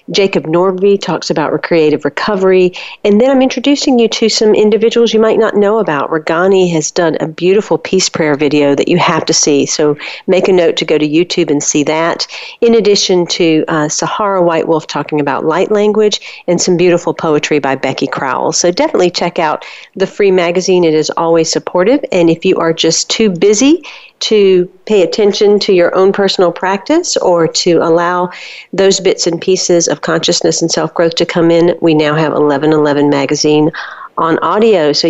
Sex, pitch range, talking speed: female, 155-200 Hz, 185 wpm